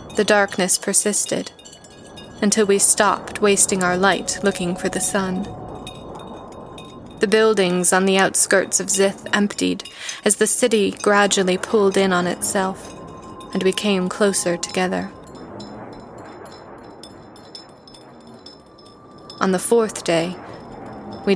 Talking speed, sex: 110 wpm, female